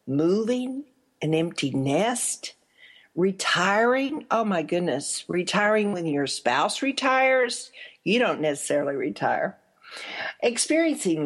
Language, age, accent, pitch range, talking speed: English, 50-69, American, 160-220 Hz, 95 wpm